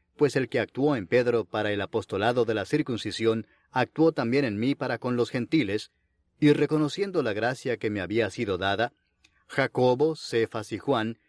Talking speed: 175 wpm